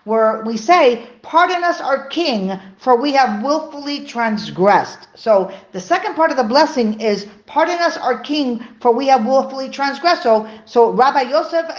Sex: female